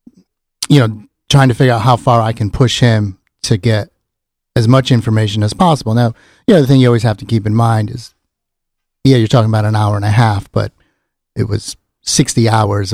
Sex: male